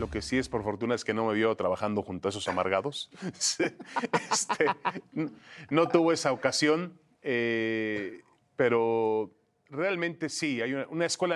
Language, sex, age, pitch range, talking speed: Spanish, male, 30-49, 110-150 Hz, 160 wpm